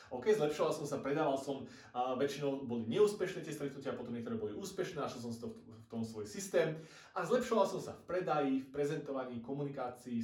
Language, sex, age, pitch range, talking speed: Slovak, male, 30-49, 120-170 Hz, 190 wpm